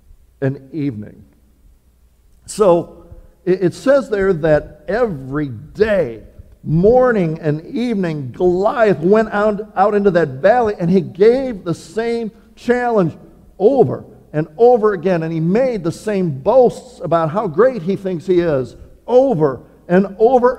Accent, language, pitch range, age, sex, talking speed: American, English, 130-195 Hz, 50-69, male, 130 wpm